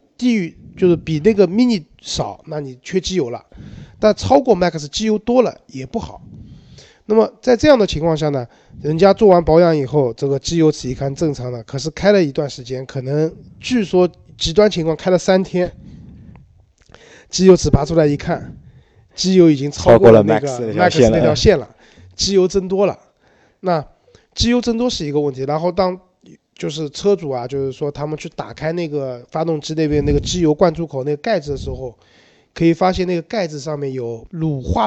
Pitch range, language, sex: 140-185 Hz, Chinese, male